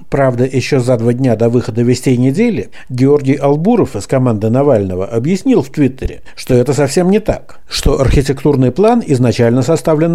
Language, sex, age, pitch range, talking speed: Russian, male, 60-79, 120-165 Hz, 160 wpm